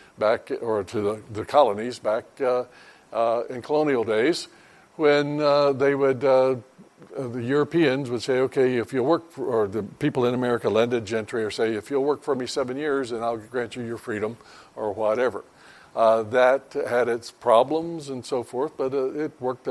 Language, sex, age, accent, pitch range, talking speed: English, male, 60-79, American, 115-140 Hz, 185 wpm